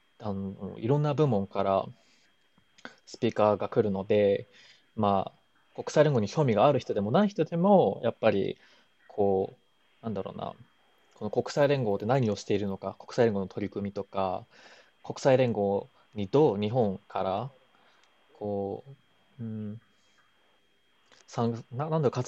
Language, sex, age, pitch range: Japanese, male, 20-39, 105-155 Hz